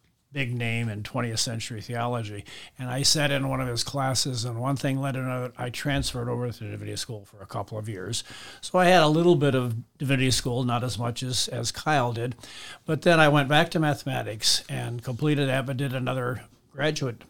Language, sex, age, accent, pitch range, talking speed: English, male, 50-69, American, 120-140 Hz, 210 wpm